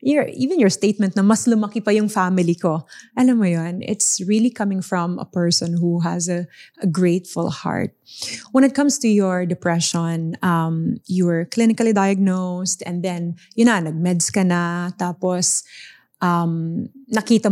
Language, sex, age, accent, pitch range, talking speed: English, female, 20-39, Filipino, 170-210 Hz, 165 wpm